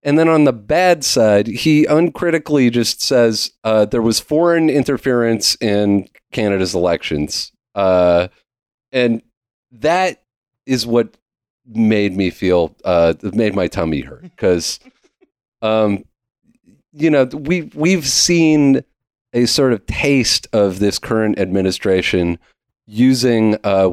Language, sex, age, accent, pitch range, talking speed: English, male, 40-59, American, 95-135 Hz, 120 wpm